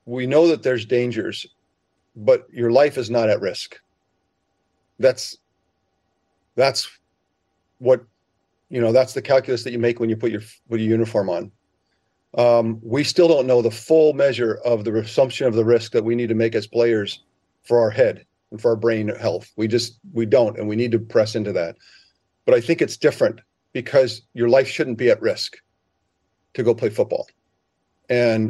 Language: English